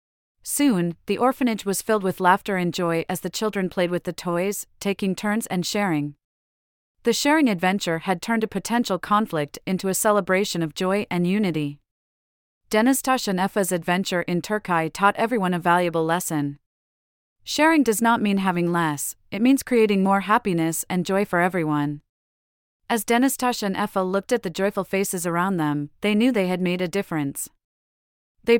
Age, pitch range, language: 30-49, 165-210 Hz, English